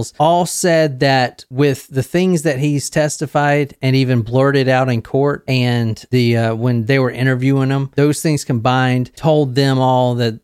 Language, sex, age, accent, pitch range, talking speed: English, male, 40-59, American, 130-175 Hz, 170 wpm